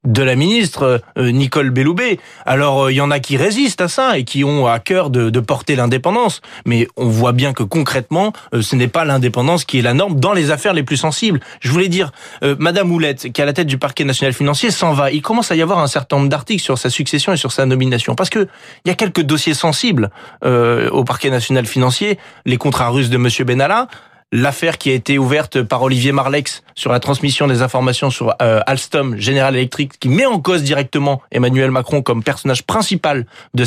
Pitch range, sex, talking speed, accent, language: 125-160 Hz, male, 220 wpm, French, French